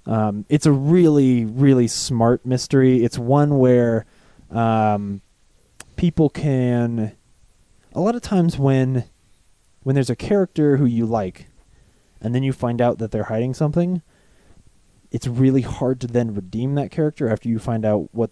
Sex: male